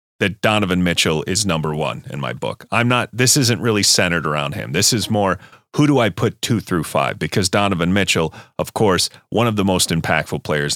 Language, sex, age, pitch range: English, male, 30-49, 85-120 Hz